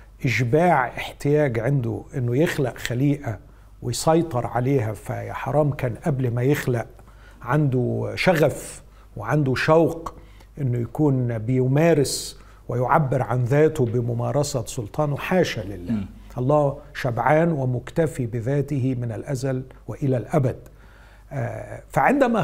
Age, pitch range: 50-69, 120-150 Hz